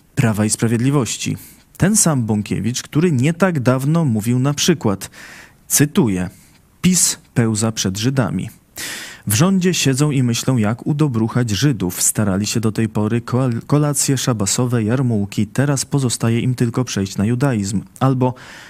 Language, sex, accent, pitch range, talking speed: Polish, male, native, 110-140 Hz, 135 wpm